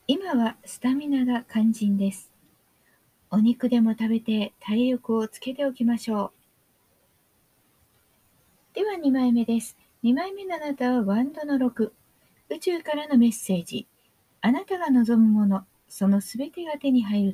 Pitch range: 210-275 Hz